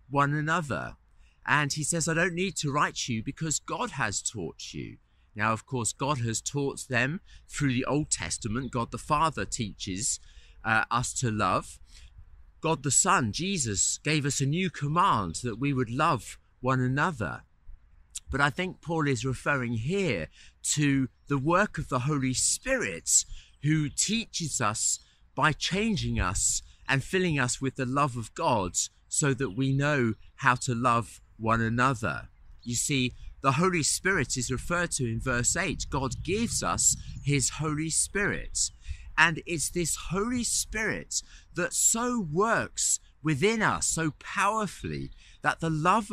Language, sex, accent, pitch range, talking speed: English, male, British, 115-160 Hz, 155 wpm